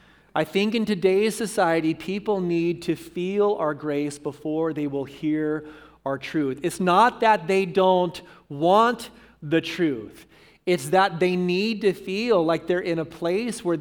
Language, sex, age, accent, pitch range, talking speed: English, male, 40-59, American, 165-205 Hz, 160 wpm